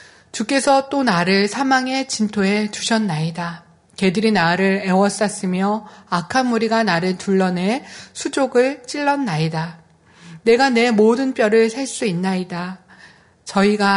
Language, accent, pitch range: Korean, native, 180-245 Hz